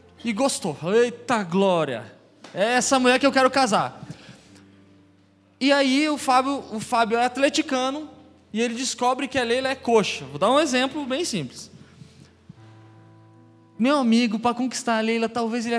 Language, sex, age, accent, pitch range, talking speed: Portuguese, male, 20-39, Brazilian, 205-265 Hz, 155 wpm